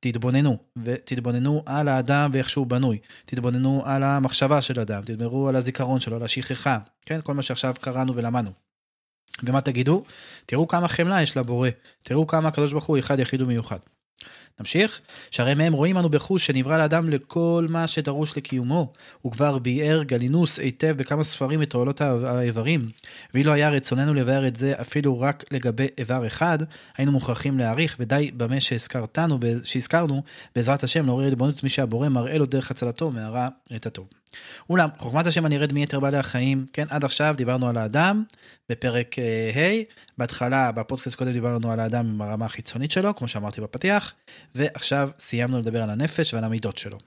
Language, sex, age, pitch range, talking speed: Hebrew, male, 20-39, 125-150 Hz, 160 wpm